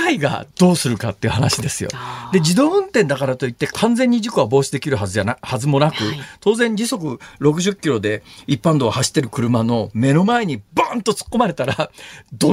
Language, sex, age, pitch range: Japanese, male, 40-59, 130-205 Hz